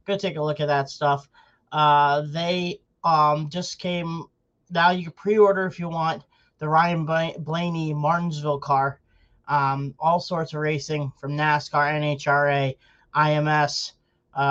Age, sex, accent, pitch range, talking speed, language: 30-49, male, American, 145-170 Hz, 135 wpm, English